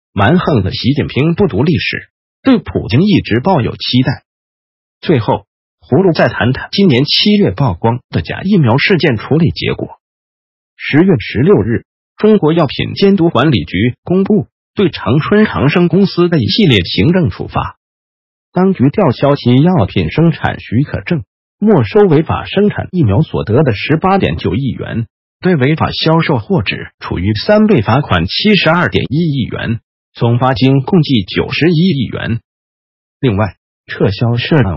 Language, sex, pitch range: Chinese, male, 120-180 Hz